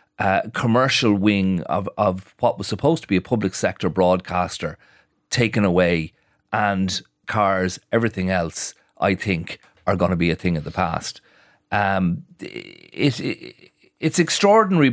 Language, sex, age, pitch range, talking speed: English, male, 40-59, 95-115 Hz, 145 wpm